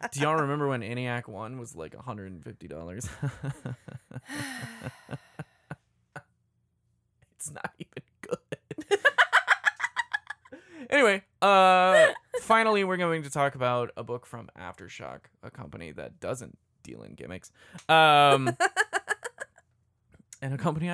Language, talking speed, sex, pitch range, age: English, 105 wpm, male, 120-150 Hz, 20-39